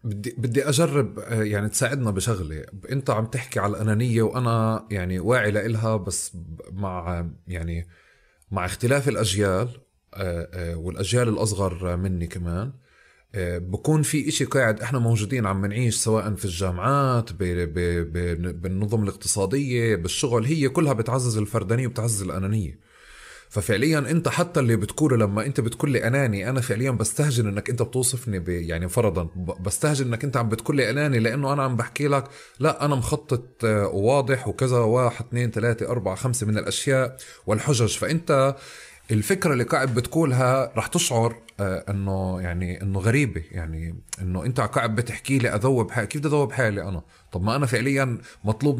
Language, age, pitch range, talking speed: Arabic, 30-49, 100-130 Hz, 145 wpm